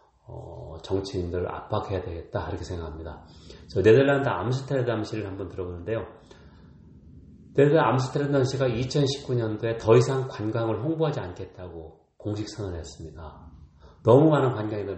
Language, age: Korean, 40-59